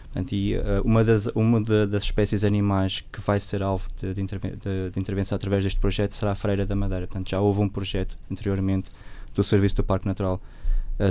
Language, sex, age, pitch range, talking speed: Portuguese, male, 20-39, 100-110 Hz, 195 wpm